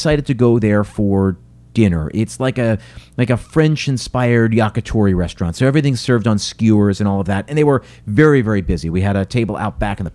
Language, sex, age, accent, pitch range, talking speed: English, male, 40-59, American, 110-145 Hz, 220 wpm